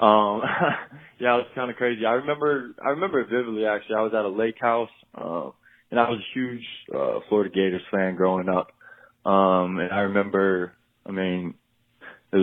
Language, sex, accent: English, male, American